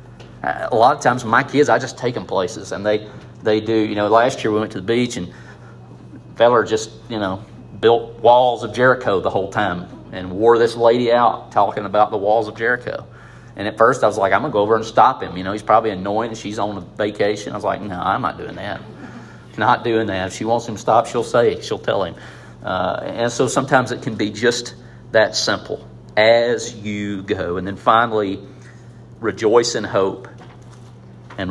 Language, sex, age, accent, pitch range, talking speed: English, male, 40-59, American, 100-125 Hz, 215 wpm